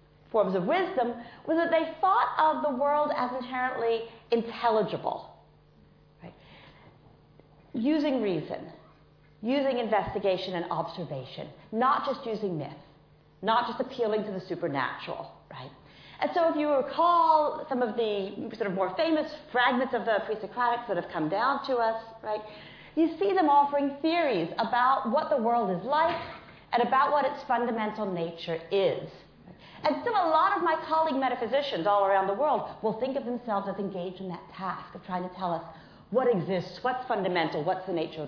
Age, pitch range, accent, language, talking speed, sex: 40-59, 185-285 Hz, American, English, 165 wpm, female